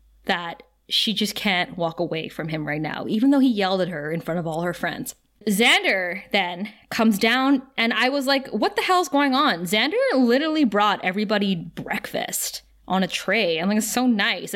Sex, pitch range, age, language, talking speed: female, 190-255 Hz, 20-39, English, 200 wpm